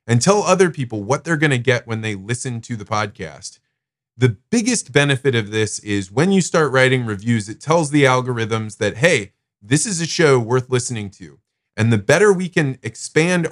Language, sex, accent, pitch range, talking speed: English, male, American, 110-145 Hz, 200 wpm